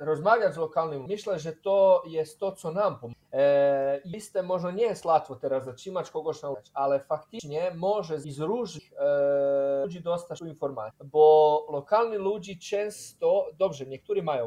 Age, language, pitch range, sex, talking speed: 30-49, Polish, 140-185 Hz, male, 160 wpm